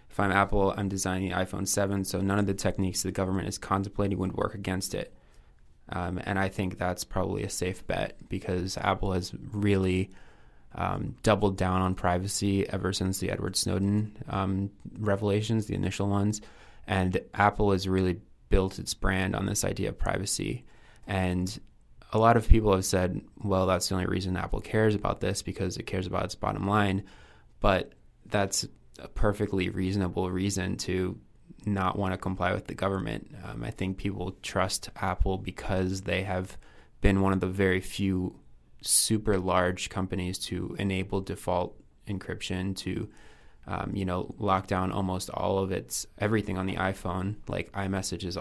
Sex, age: male, 20-39